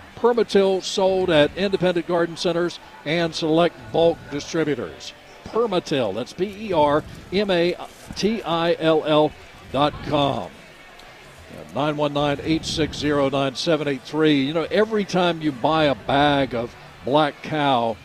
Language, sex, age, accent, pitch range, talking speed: English, male, 60-79, American, 135-170 Hz, 125 wpm